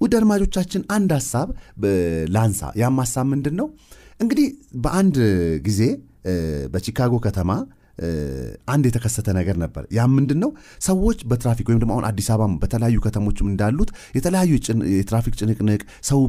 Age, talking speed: 40-59, 105 wpm